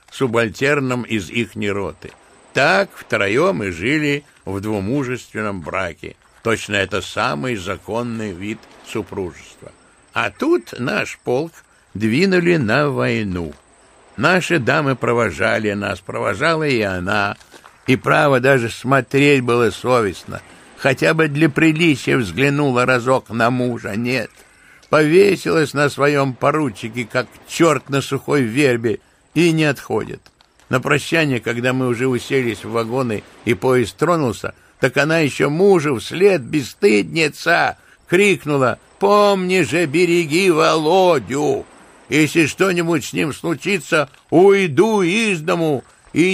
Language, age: Russian, 60-79